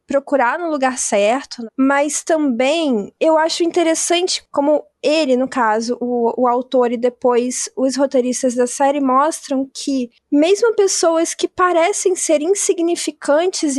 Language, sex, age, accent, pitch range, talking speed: Portuguese, female, 20-39, Brazilian, 250-325 Hz, 130 wpm